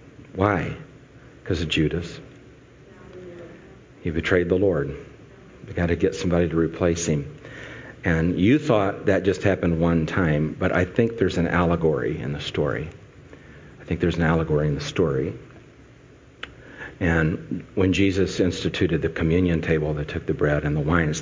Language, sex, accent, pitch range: English, male, American, 80-90 Hz